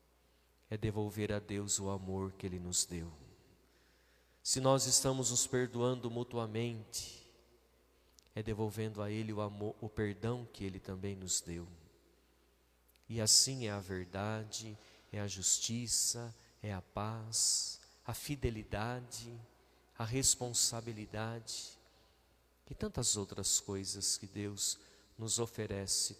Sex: male